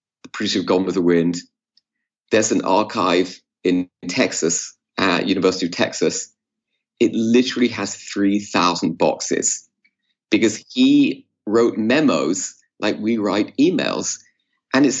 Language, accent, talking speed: English, British, 120 wpm